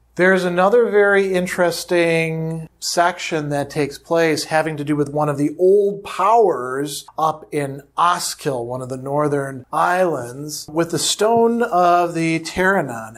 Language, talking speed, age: English, 140 wpm, 40-59